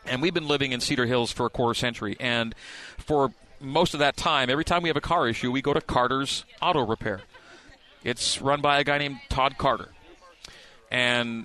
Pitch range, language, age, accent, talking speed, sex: 115-140 Hz, English, 40-59, American, 210 wpm, male